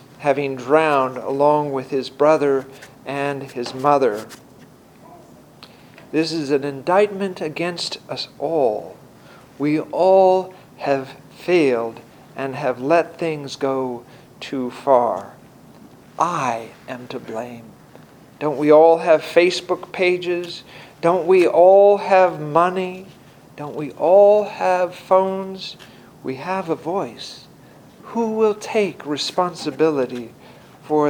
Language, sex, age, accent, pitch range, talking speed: English, male, 50-69, American, 135-180 Hz, 110 wpm